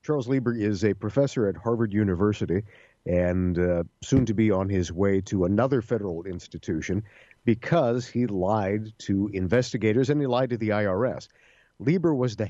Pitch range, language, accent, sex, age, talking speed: 95-120 Hz, English, American, male, 50-69, 165 wpm